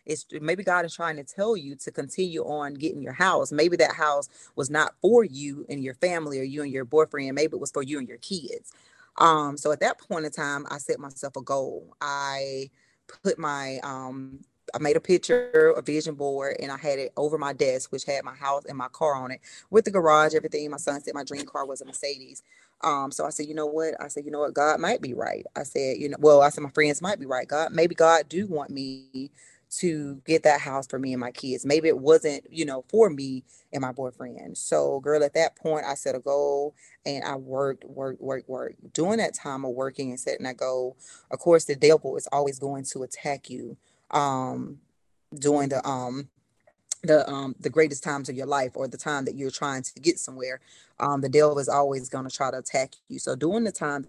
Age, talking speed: 30-49, 235 wpm